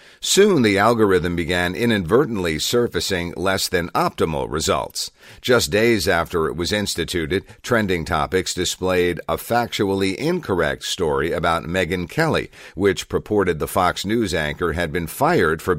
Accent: American